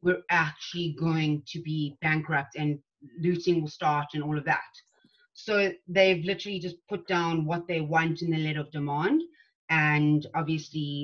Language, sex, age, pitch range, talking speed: English, female, 30-49, 150-175 Hz, 165 wpm